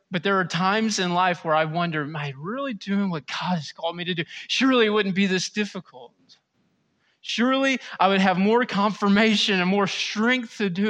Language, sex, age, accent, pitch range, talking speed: English, male, 30-49, American, 180-230 Hz, 205 wpm